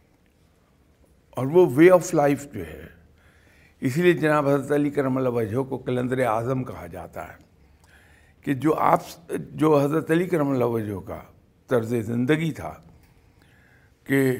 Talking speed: 135 wpm